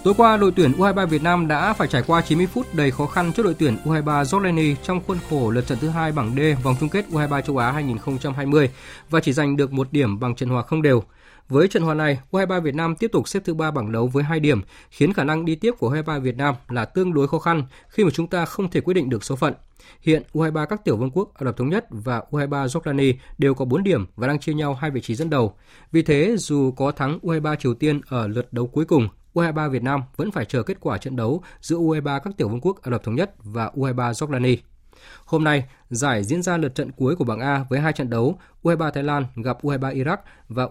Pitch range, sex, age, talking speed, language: 125-160 Hz, male, 20-39, 260 wpm, Vietnamese